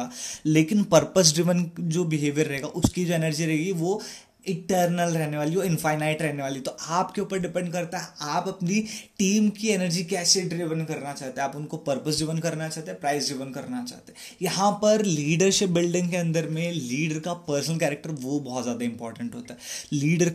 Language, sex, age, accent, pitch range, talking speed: English, male, 20-39, Indian, 150-190 Hz, 185 wpm